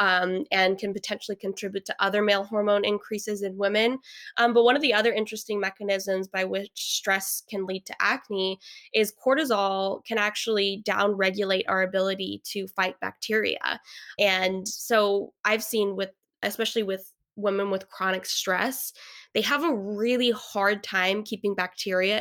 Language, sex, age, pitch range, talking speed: English, female, 10-29, 195-225 Hz, 150 wpm